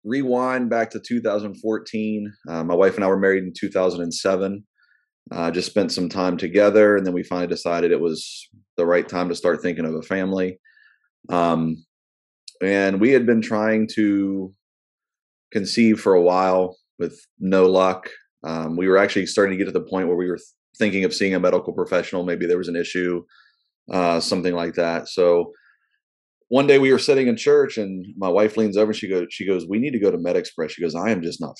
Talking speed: 205 wpm